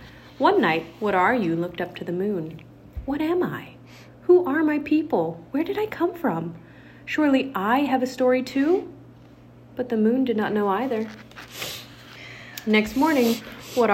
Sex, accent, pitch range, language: female, American, 180-250 Hz, English